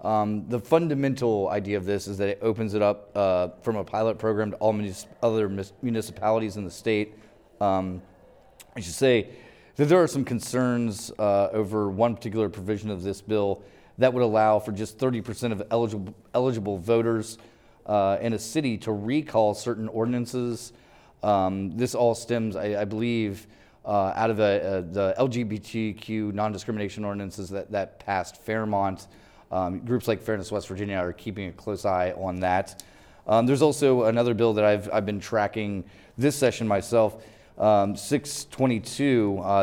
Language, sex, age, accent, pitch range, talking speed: English, male, 30-49, American, 100-120 Hz, 165 wpm